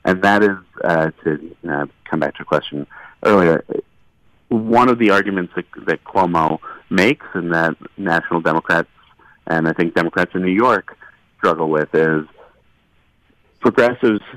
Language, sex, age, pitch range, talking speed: English, male, 40-59, 80-100 Hz, 145 wpm